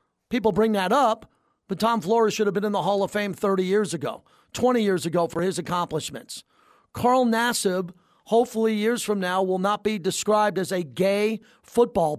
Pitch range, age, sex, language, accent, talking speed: 180-220 Hz, 40-59, male, English, American, 185 wpm